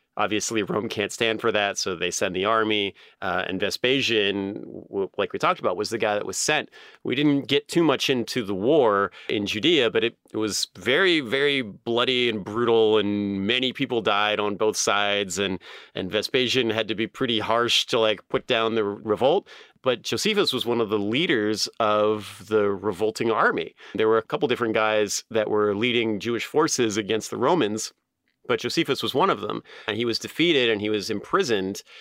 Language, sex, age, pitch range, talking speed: English, male, 30-49, 105-125 Hz, 195 wpm